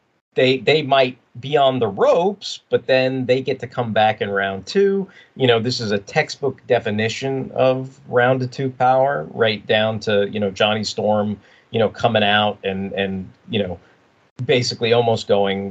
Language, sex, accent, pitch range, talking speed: English, male, American, 100-125 Hz, 180 wpm